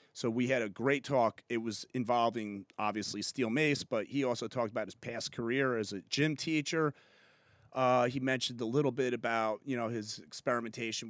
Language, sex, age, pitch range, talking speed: English, male, 30-49, 115-140 Hz, 190 wpm